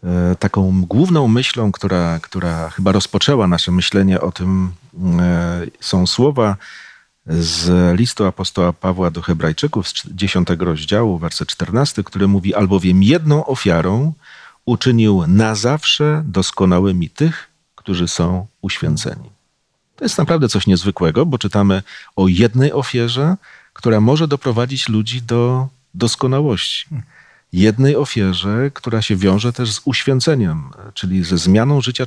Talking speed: 120 wpm